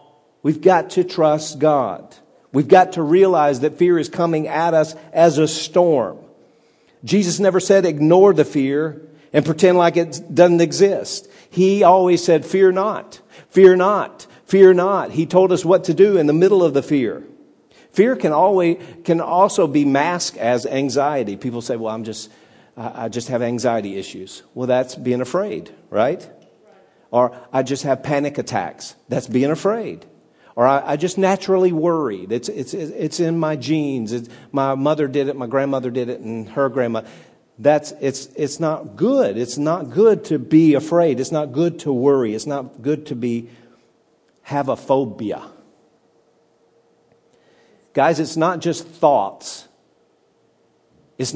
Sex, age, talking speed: male, 50-69, 160 wpm